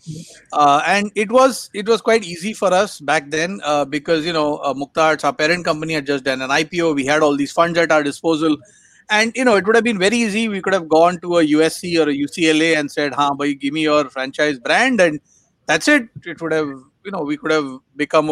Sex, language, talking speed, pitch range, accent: male, Hindi, 245 wpm, 150-200 Hz, native